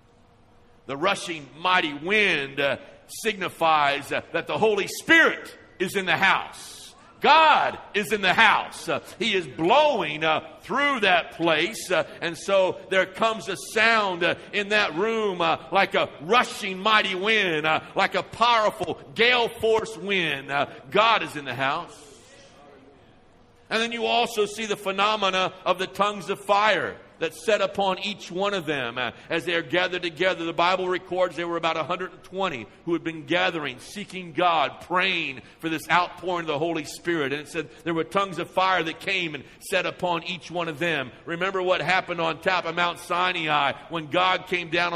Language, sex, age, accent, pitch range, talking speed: English, male, 50-69, American, 165-195 Hz, 175 wpm